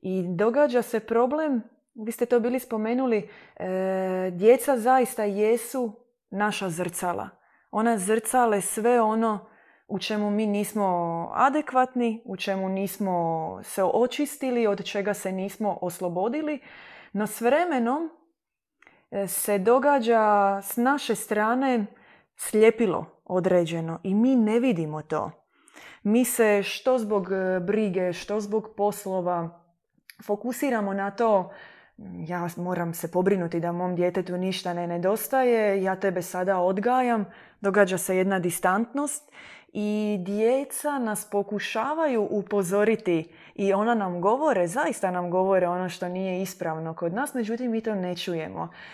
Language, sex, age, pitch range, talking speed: Croatian, female, 20-39, 180-230 Hz, 125 wpm